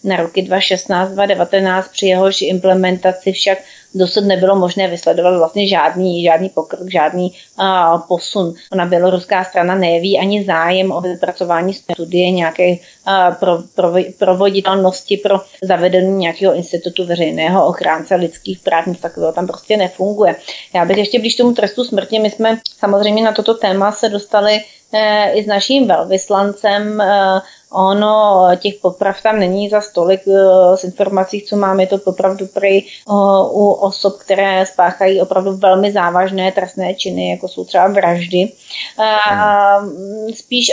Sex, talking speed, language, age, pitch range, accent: female, 135 wpm, Czech, 30-49, 185-205 Hz, native